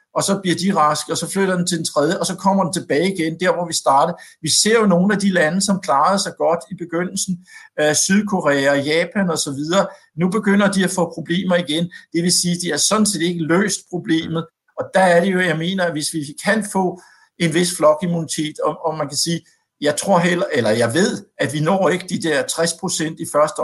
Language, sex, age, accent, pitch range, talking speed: Danish, male, 60-79, native, 150-185 Hz, 235 wpm